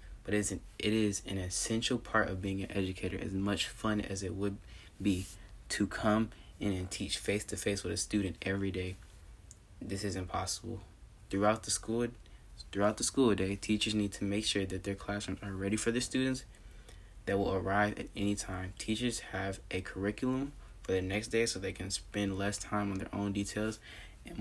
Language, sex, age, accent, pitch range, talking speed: English, male, 20-39, American, 90-105 Hz, 200 wpm